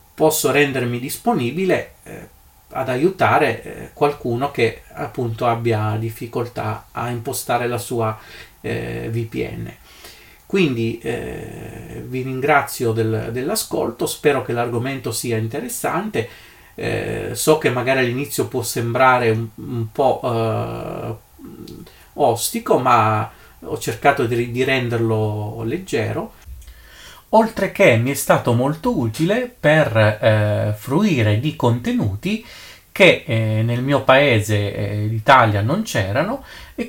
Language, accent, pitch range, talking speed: Italian, native, 110-140 Hz, 110 wpm